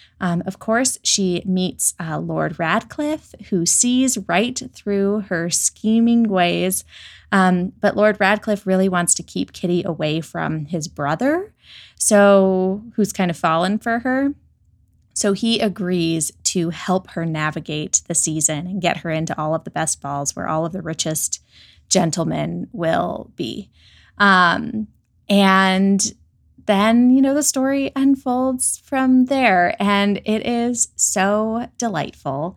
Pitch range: 165-230 Hz